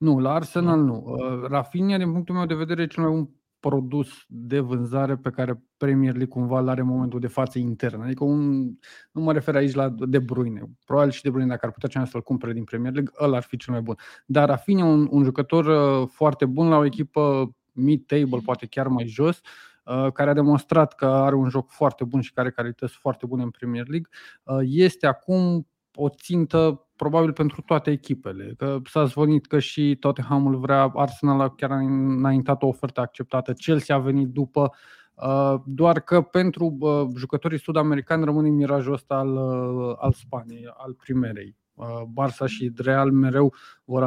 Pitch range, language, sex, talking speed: 125-145 Hz, Romanian, male, 180 wpm